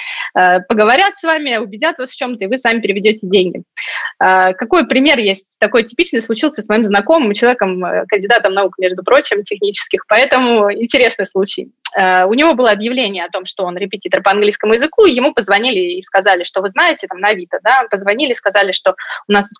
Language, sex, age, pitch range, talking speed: Russian, female, 20-39, 200-265 Hz, 185 wpm